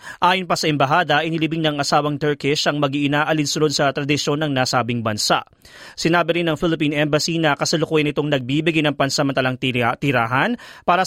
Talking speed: 155 wpm